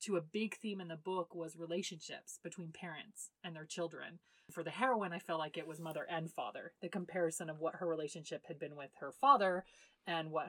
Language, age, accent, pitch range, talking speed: English, 30-49, American, 165-215 Hz, 215 wpm